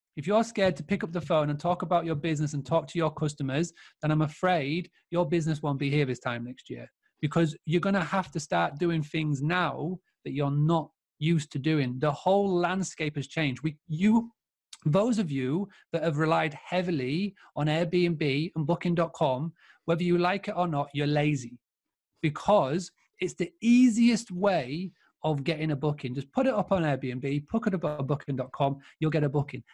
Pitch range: 140-175 Hz